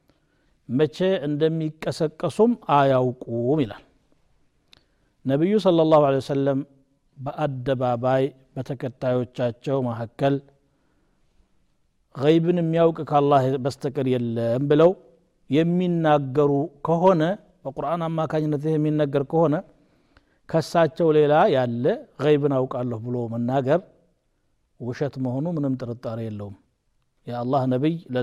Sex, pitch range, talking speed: male, 130-155 Hz, 75 wpm